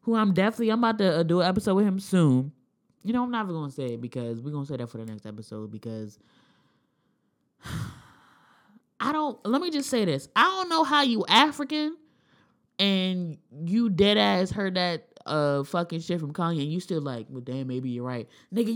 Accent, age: American, 20-39